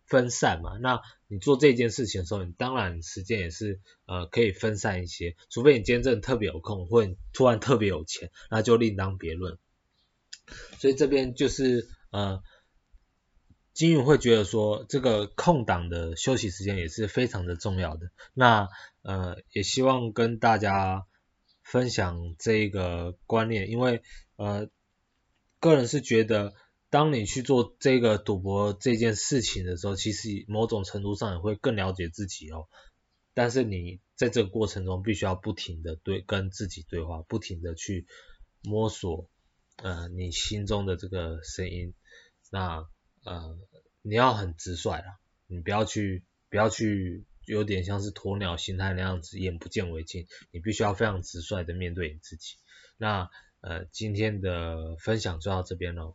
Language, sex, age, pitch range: Chinese, male, 20-39, 90-110 Hz